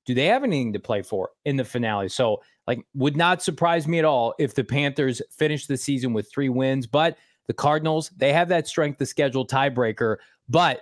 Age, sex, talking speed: 30-49, male, 210 wpm